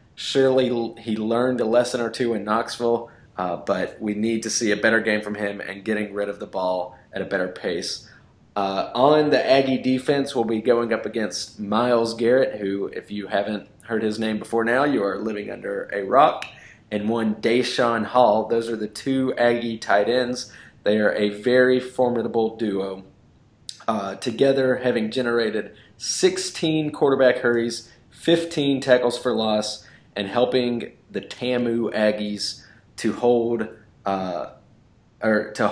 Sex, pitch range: male, 105-130 Hz